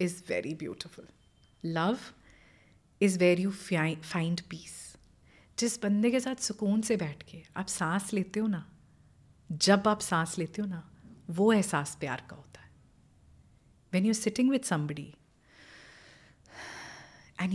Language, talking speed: Punjabi, 135 wpm